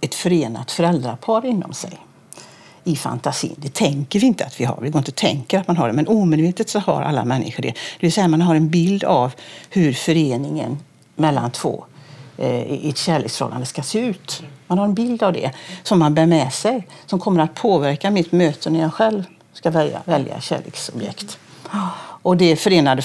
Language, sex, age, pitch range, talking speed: Swedish, female, 60-79, 150-205 Hz, 200 wpm